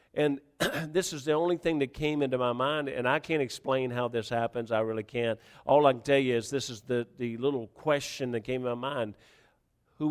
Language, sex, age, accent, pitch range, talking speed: English, male, 50-69, American, 130-165 Hz, 230 wpm